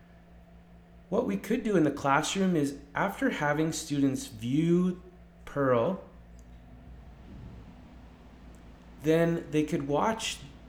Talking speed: 95 wpm